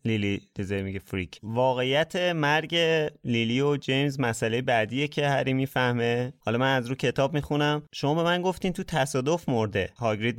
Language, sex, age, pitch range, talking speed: Persian, male, 30-49, 110-145 Hz, 160 wpm